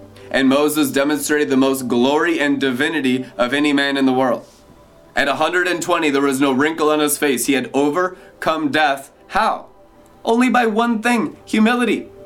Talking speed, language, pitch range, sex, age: 160 wpm, English, 135-210 Hz, male, 30-49